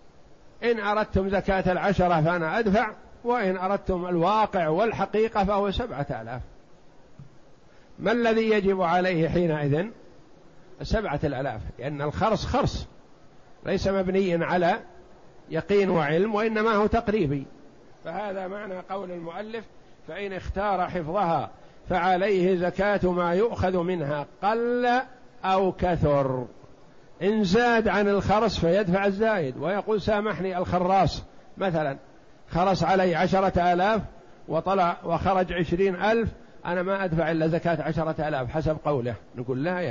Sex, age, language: male, 50-69, Arabic